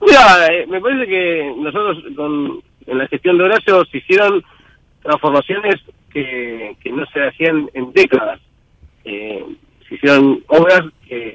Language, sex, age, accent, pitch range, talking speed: Italian, male, 40-59, Argentinian, 135-180 Hz, 145 wpm